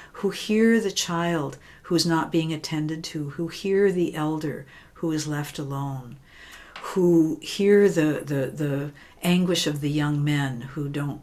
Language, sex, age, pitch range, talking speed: English, female, 60-79, 155-200 Hz, 155 wpm